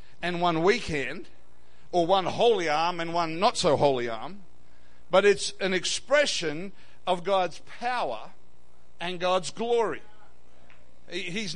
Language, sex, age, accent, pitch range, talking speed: English, male, 60-79, Australian, 140-215 Hz, 130 wpm